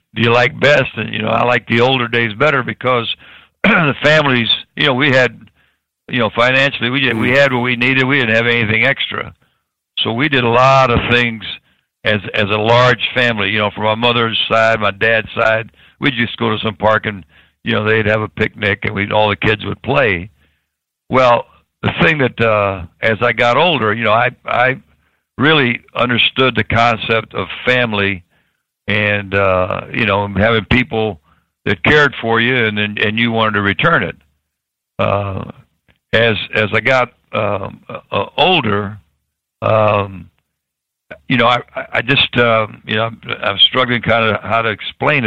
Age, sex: 60-79, male